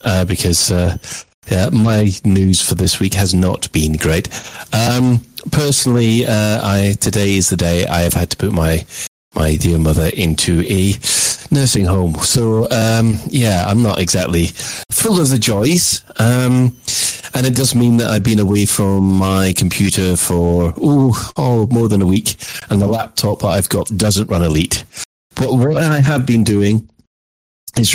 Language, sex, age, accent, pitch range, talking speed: English, male, 40-59, British, 90-115 Hz, 170 wpm